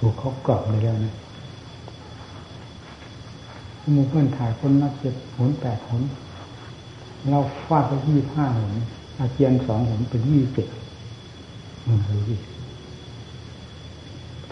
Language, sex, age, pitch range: Thai, male, 60-79, 110-130 Hz